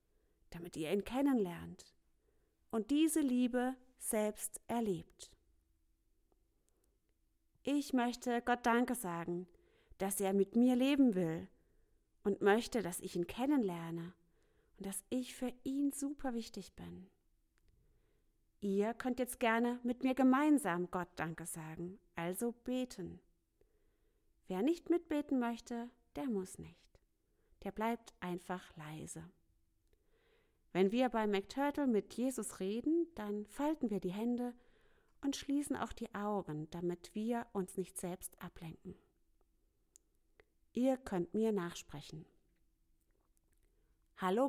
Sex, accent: female, German